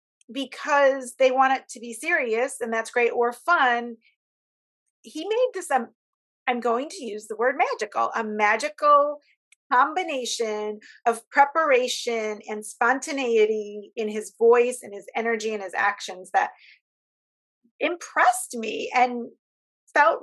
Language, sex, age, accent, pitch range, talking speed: English, female, 40-59, American, 220-265 Hz, 130 wpm